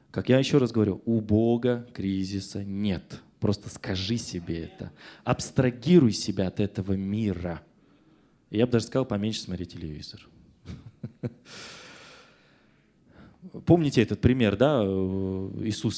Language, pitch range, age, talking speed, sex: Russian, 95-130 Hz, 20-39, 115 wpm, male